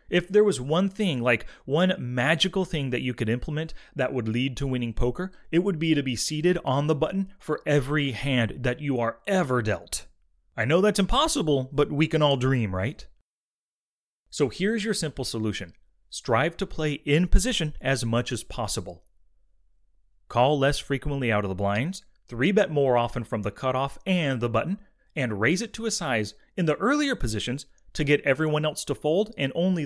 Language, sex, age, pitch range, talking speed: English, male, 30-49, 115-160 Hz, 190 wpm